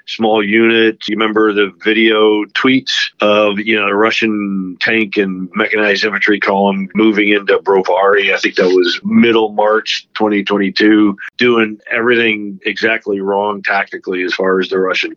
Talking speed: 145 wpm